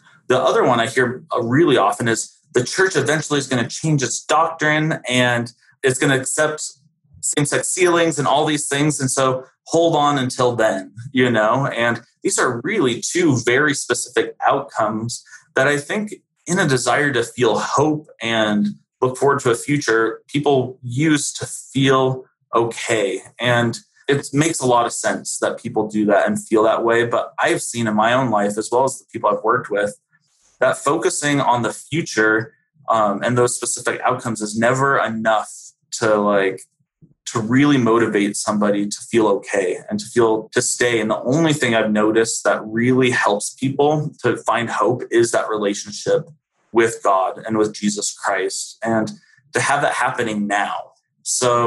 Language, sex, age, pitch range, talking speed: English, male, 30-49, 115-145 Hz, 175 wpm